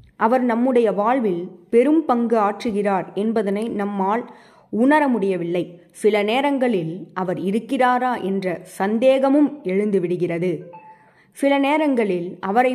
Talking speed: 95 wpm